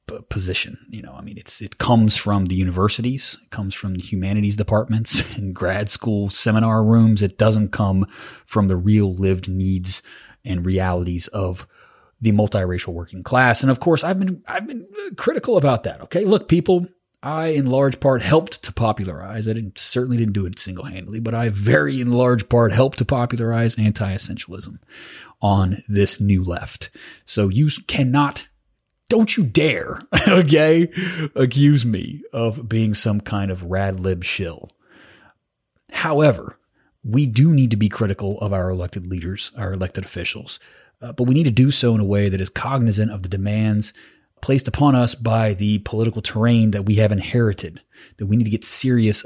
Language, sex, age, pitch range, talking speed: English, male, 30-49, 100-125 Hz, 175 wpm